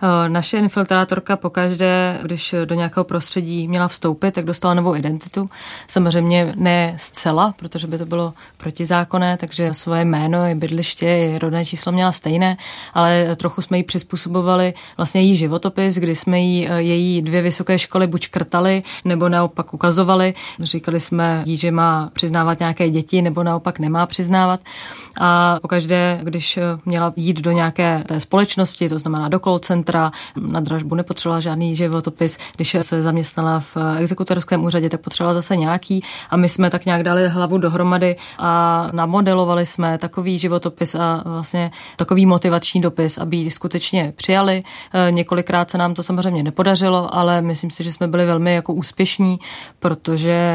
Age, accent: 20-39, native